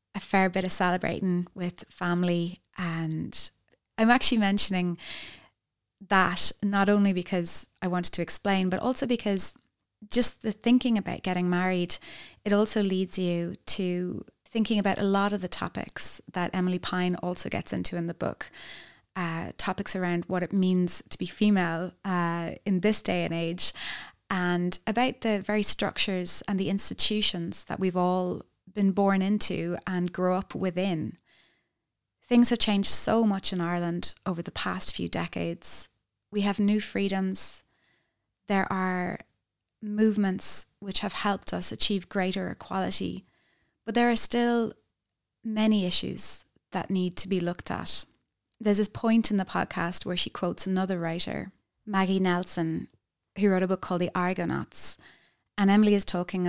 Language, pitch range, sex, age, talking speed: English, 180-205 Hz, female, 20-39, 150 wpm